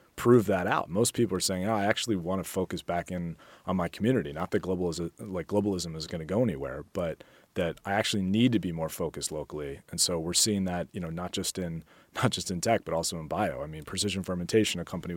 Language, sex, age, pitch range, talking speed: English, male, 30-49, 85-105 Hz, 245 wpm